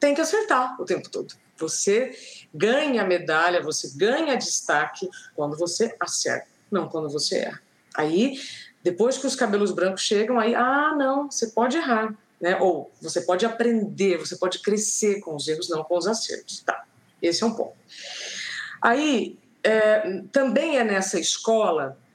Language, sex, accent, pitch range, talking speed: Portuguese, female, Brazilian, 180-250 Hz, 155 wpm